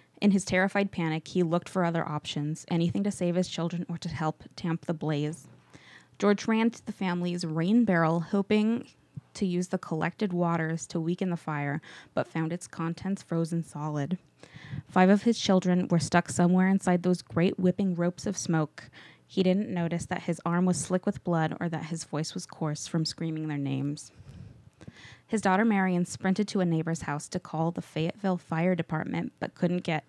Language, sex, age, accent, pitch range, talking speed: English, female, 20-39, American, 165-190 Hz, 185 wpm